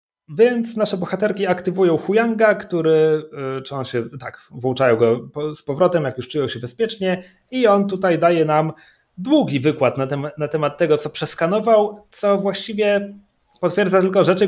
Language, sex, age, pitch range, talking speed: Polish, male, 30-49, 130-175 Hz, 160 wpm